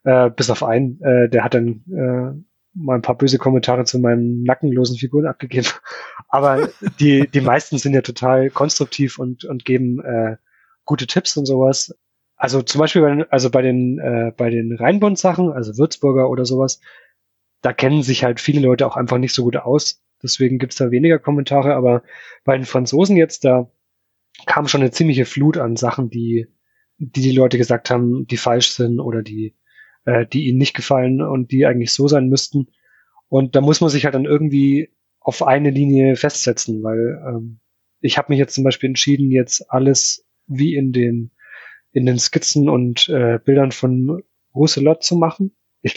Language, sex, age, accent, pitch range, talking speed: German, male, 20-39, German, 120-140 Hz, 180 wpm